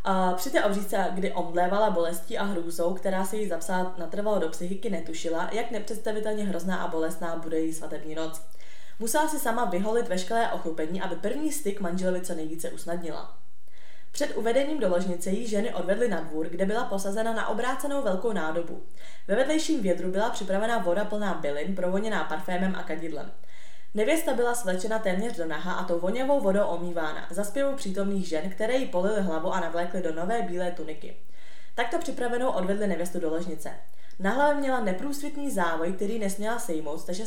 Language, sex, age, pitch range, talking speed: Czech, female, 20-39, 175-225 Hz, 170 wpm